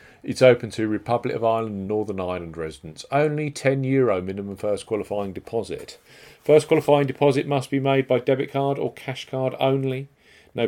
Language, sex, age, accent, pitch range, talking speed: English, male, 40-59, British, 100-130 Hz, 175 wpm